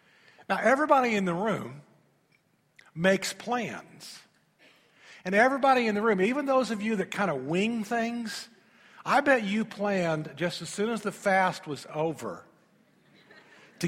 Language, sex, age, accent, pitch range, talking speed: English, male, 50-69, American, 160-240 Hz, 145 wpm